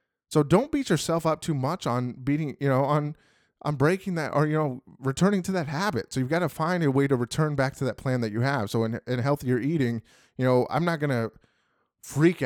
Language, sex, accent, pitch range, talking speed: English, male, American, 115-145 Hz, 240 wpm